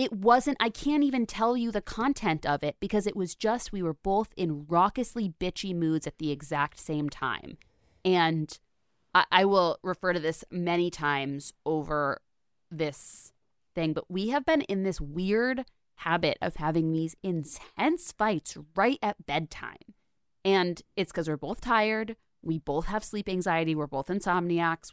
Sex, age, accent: female, 20-39, American